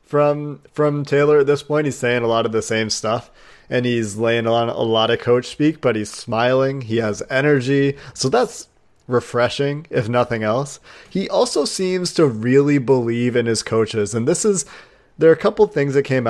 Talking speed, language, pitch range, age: 200 wpm, English, 115-145 Hz, 30-49